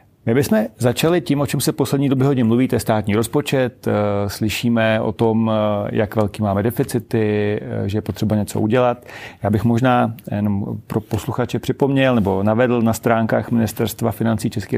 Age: 40-59